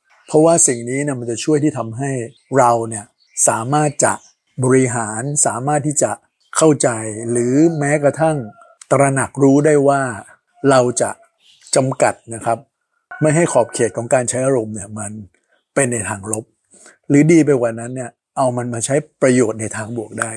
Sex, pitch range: male, 115-140 Hz